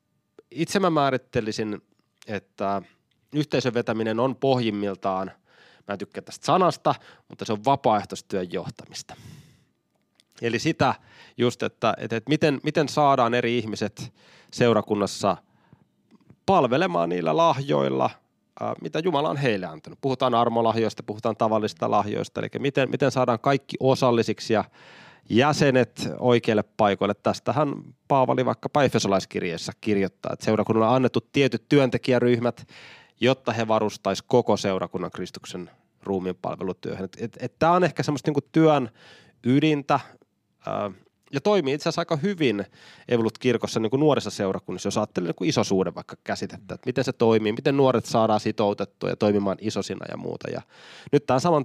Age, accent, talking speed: 30-49, native, 130 wpm